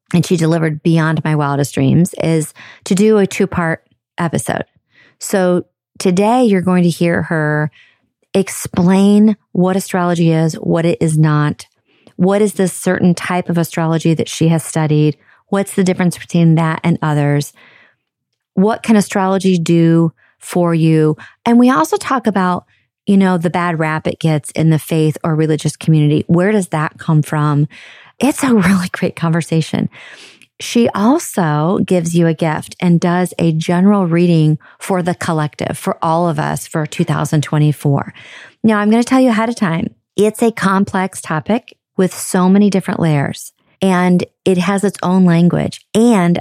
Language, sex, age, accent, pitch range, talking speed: English, female, 40-59, American, 160-195 Hz, 160 wpm